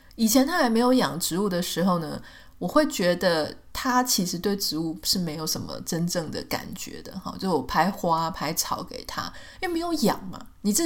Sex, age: female, 20-39